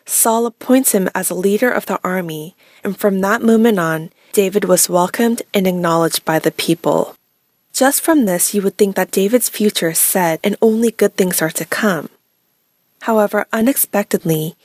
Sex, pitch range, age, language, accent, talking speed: female, 175-230 Hz, 20-39, English, American, 170 wpm